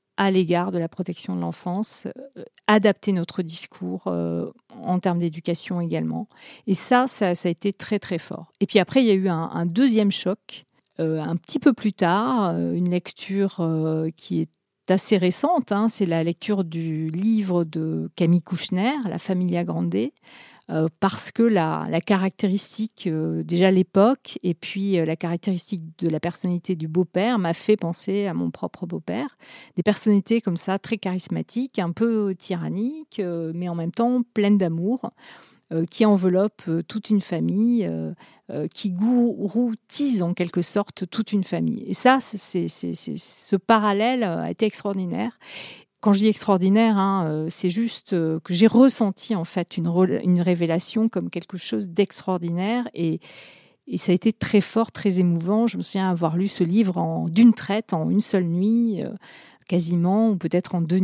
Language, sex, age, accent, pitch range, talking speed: French, female, 40-59, French, 170-215 Hz, 180 wpm